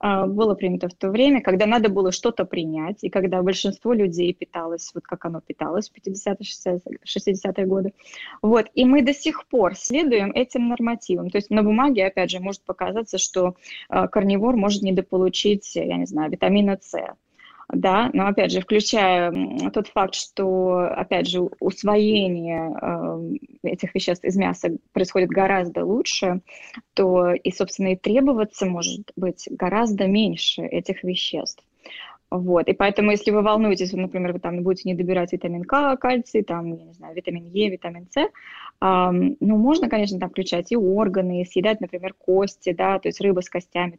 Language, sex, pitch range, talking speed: Russian, female, 180-210 Hz, 160 wpm